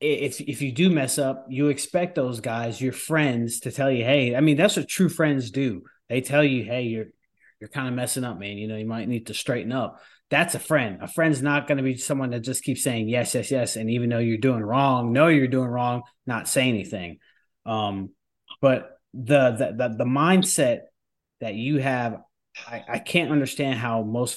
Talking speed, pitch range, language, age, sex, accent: 215 wpm, 120-145 Hz, English, 20-39, male, American